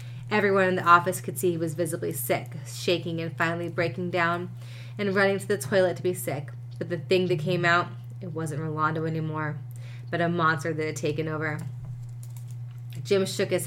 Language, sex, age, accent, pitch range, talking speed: English, female, 20-39, American, 120-185 Hz, 190 wpm